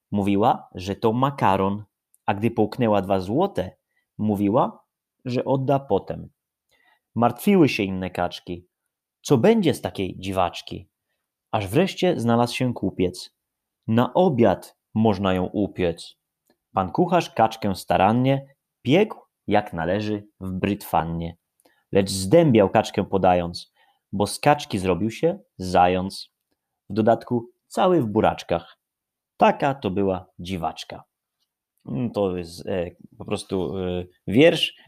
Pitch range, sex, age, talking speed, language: 95-120 Hz, male, 30-49, 110 wpm, Polish